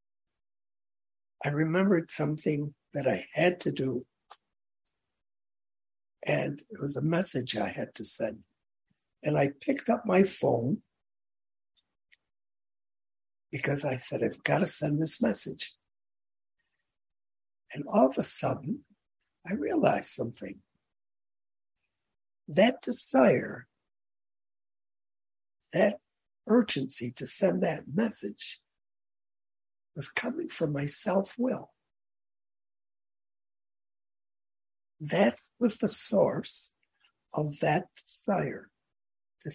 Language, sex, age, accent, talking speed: English, male, 60-79, American, 95 wpm